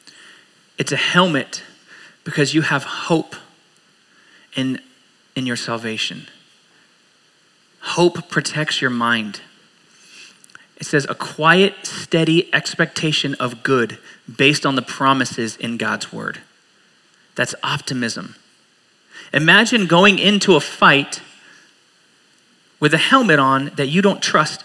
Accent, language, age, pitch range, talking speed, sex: American, English, 30-49, 140-180 Hz, 110 wpm, male